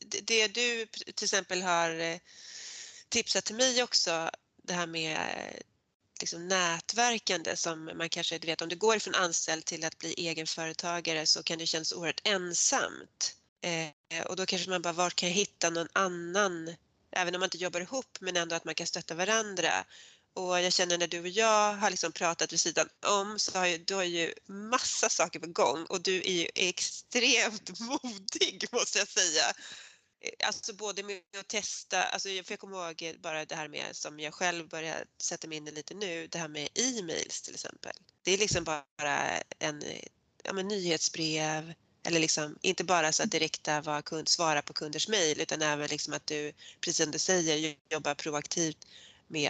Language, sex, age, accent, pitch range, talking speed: Swedish, female, 30-49, native, 160-205 Hz, 185 wpm